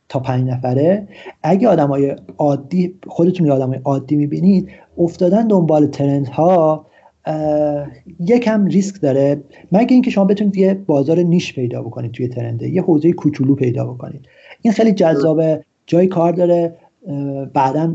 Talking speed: 135 wpm